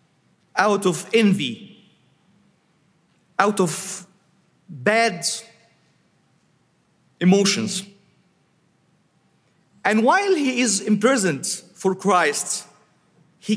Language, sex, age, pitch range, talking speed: English, male, 40-59, 180-225 Hz, 65 wpm